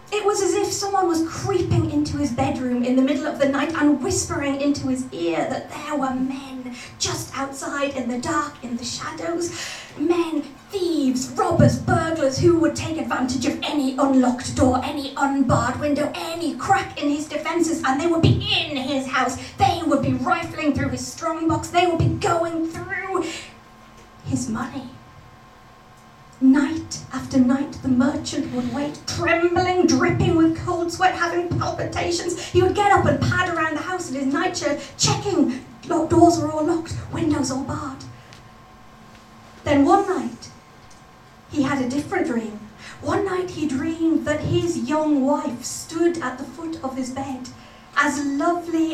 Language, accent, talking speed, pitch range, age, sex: English, British, 160 wpm, 270-335 Hz, 30-49, female